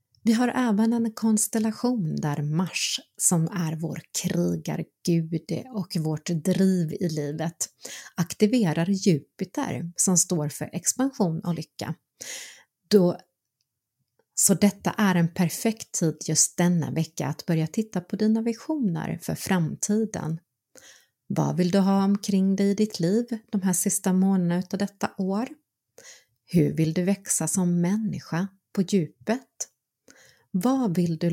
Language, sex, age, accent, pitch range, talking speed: Swedish, female, 30-49, native, 165-205 Hz, 130 wpm